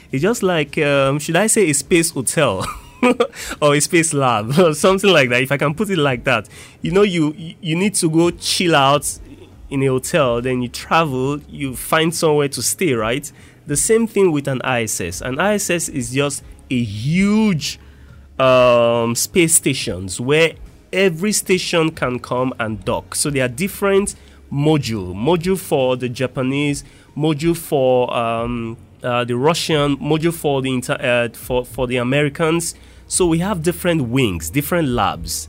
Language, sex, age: English, male, 20-39